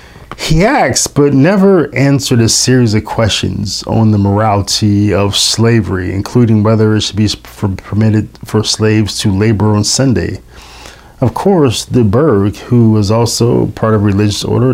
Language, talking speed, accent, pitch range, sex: English, 150 wpm, American, 105-125 Hz, male